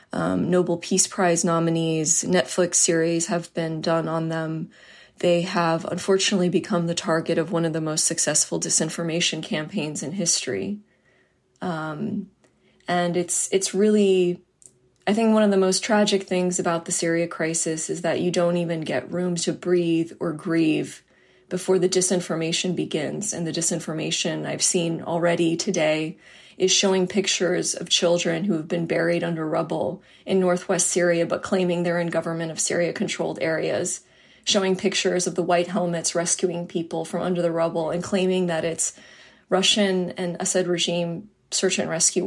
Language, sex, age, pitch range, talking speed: English, female, 20-39, 165-185 Hz, 160 wpm